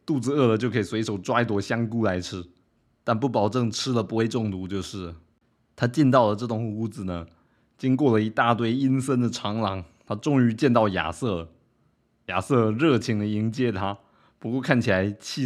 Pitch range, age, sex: 100-125 Hz, 20-39, male